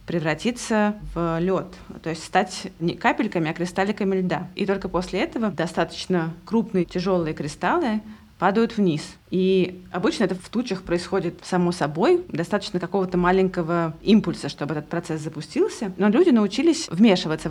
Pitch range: 180-215 Hz